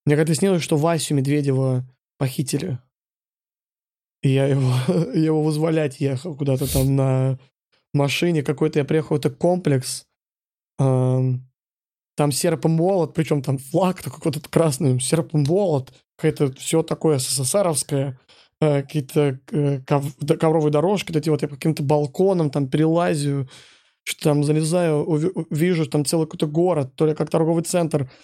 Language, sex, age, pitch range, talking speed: Russian, male, 20-39, 140-165 Hz, 120 wpm